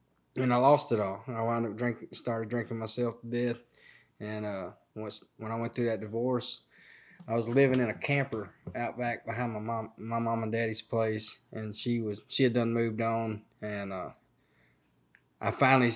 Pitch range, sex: 110-120 Hz, male